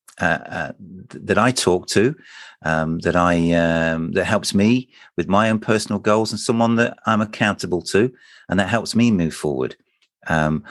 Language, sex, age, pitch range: English, male, 50-69, 90-125 Hz